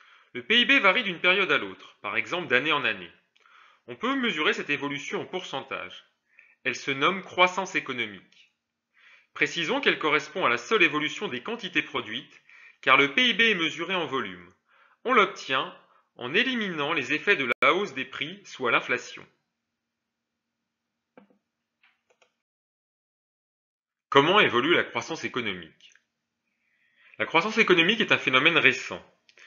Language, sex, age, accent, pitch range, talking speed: French, male, 30-49, French, 135-195 Hz, 135 wpm